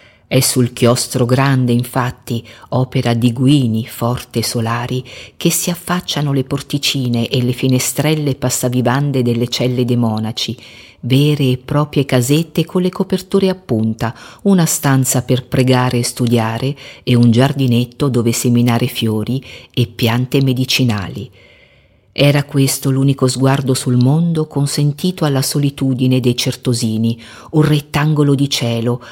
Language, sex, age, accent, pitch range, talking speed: Italian, female, 50-69, native, 125-145 Hz, 130 wpm